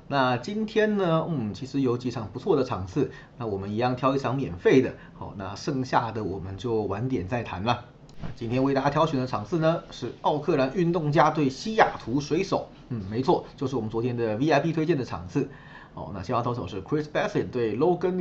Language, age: Chinese, 30-49